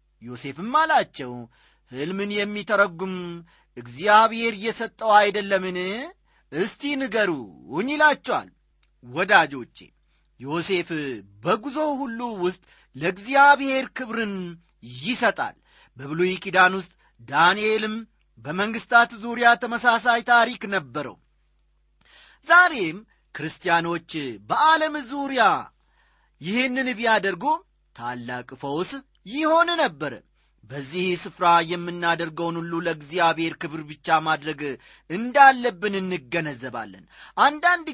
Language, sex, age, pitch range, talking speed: Amharic, male, 40-59, 165-245 Hz, 80 wpm